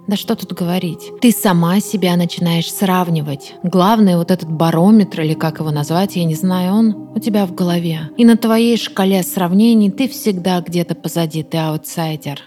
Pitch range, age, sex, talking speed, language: 165-205 Hz, 20-39, female, 175 wpm, Russian